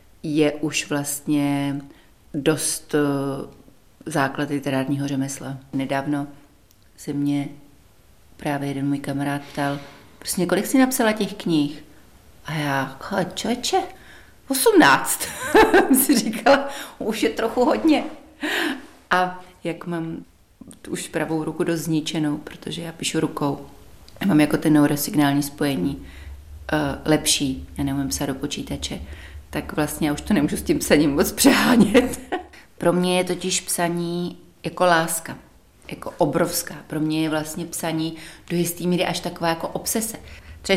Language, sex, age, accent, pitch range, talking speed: Czech, female, 40-59, native, 140-180 Hz, 135 wpm